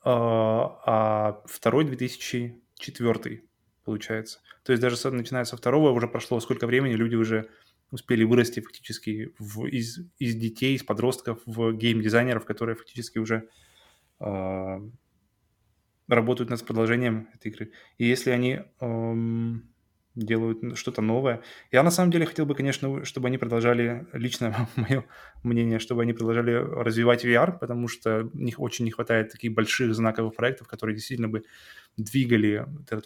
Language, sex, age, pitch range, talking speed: Russian, male, 20-39, 110-120 Hz, 140 wpm